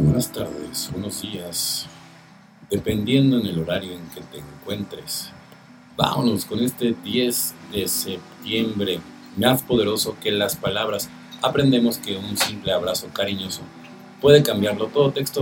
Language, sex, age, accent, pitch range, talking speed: Spanish, male, 50-69, Mexican, 100-125 Hz, 130 wpm